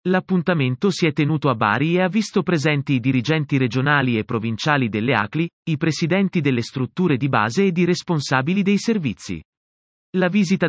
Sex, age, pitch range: male, 30-49, 140-185 Hz